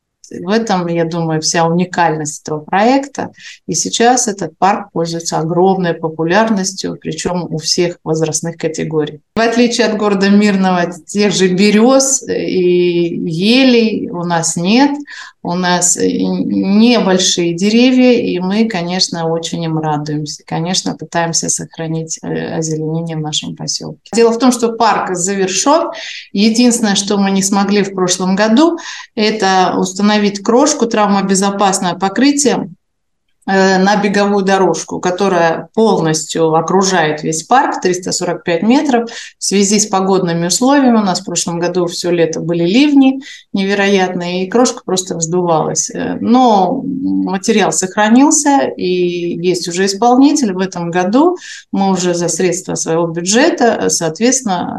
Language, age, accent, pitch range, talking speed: Russian, 30-49, native, 170-225 Hz, 125 wpm